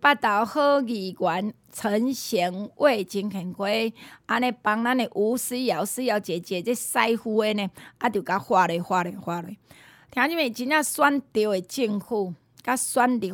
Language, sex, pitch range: Chinese, female, 185-255 Hz